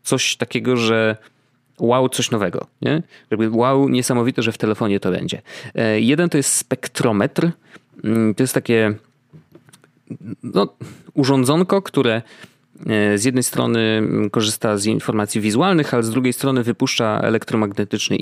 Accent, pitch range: native, 110-140 Hz